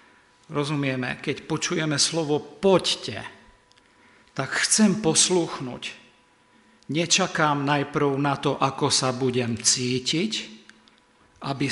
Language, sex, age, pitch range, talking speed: Slovak, male, 50-69, 125-150 Hz, 85 wpm